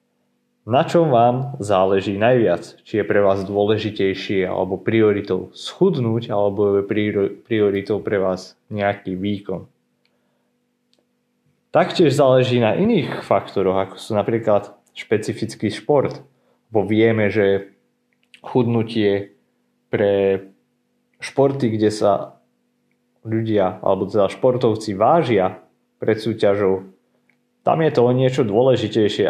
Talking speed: 100 wpm